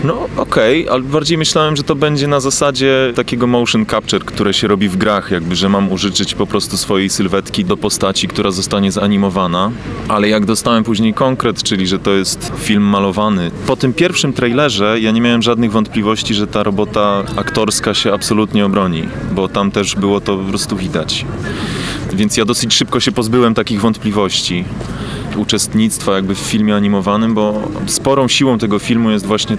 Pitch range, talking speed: 95-110 Hz, 175 wpm